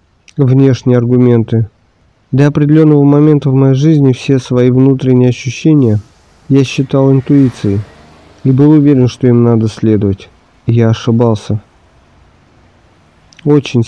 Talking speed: 110 wpm